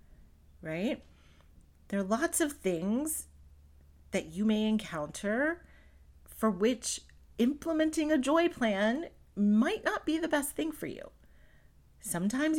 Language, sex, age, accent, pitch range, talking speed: English, female, 40-59, American, 140-215 Hz, 120 wpm